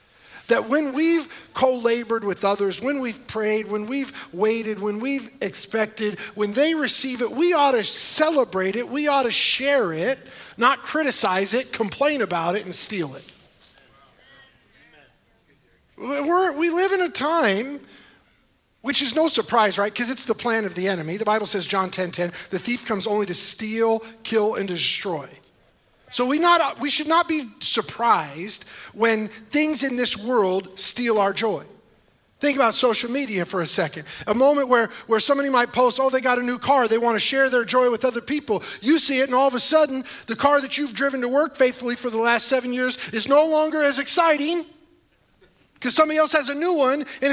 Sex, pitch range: male, 220-290 Hz